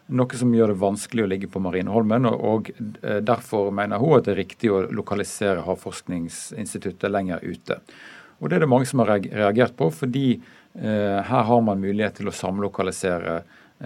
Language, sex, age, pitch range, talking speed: English, male, 50-69, 95-115 Hz, 180 wpm